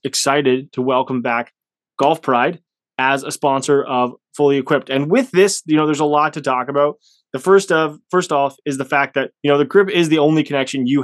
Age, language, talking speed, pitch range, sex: 20-39, English, 225 wpm, 135-160 Hz, male